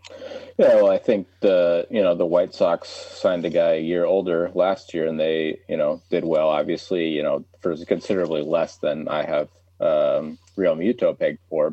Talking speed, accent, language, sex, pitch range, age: 195 wpm, American, English, male, 80-125 Hz, 30-49